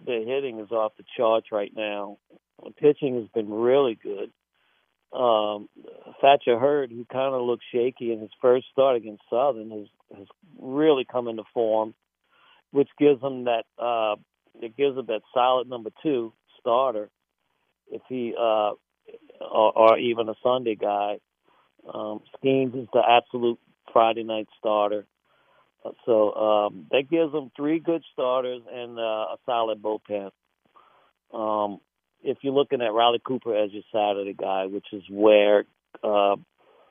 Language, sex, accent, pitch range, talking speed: English, male, American, 105-130 Hz, 150 wpm